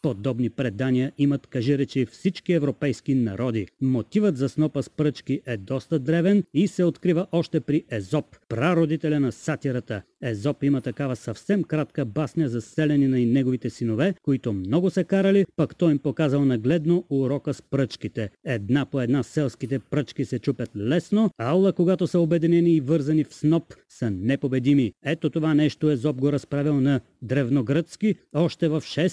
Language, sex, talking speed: Bulgarian, male, 160 wpm